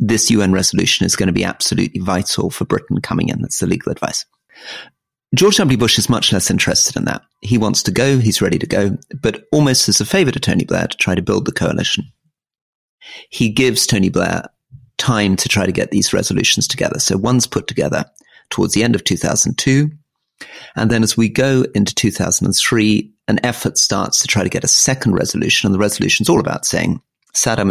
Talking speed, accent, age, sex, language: 205 wpm, British, 40-59, male, English